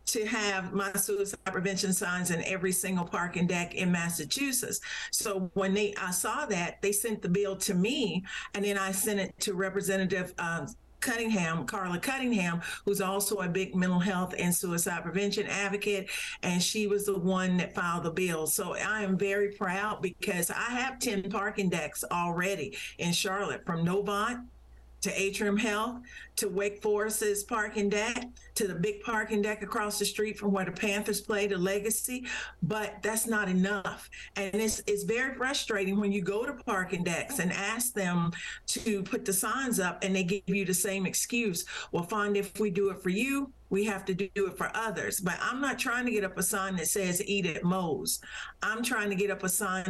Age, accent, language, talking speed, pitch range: 50-69, American, English, 190 wpm, 190-215 Hz